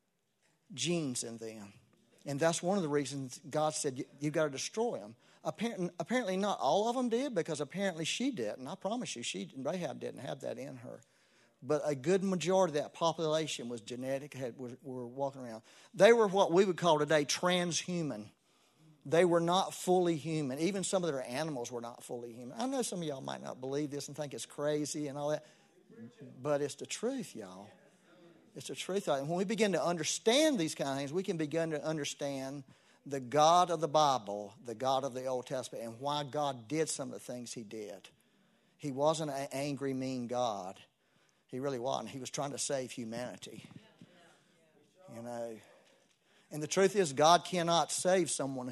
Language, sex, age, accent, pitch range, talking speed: English, male, 50-69, American, 130-175 Hz, 195 wpm